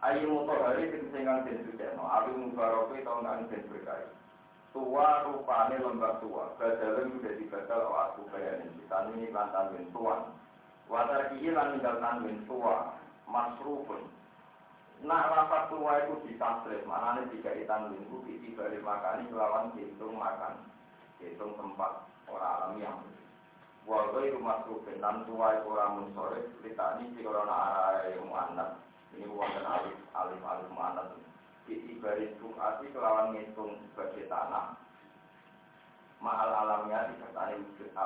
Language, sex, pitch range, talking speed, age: Indonesian, male, 105-135 Hz, 95 wpm, 40-59